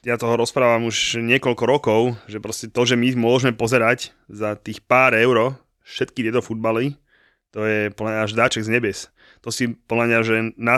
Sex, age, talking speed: male, 20-39, 175 wpm